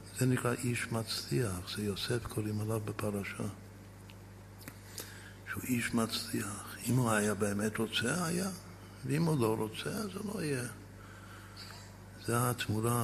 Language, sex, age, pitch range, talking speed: Hebrew, male, 60-79, 100-135 Hz, 125 wpm